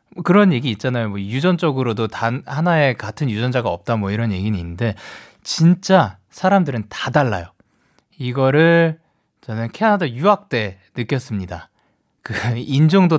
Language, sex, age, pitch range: Korean, male, 20-39, 115-185 Hz